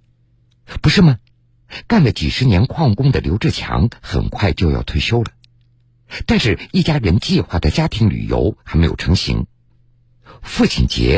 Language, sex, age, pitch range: Chinese, male, 50-69, 95-125 Hz